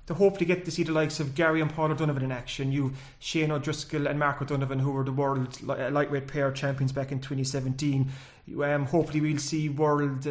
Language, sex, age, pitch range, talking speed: English, male, 30-49, 145-170 Hz, 215 wpm